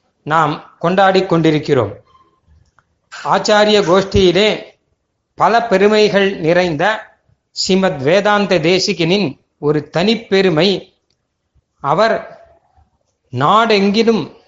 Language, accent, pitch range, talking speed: Tamil, native, 170-215 Hz, 60 wpm